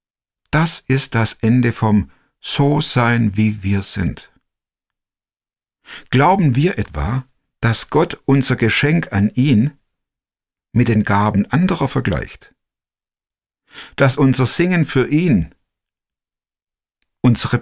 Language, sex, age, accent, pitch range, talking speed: German, male, 60-79, German, 100-135 Hz, 90 wpm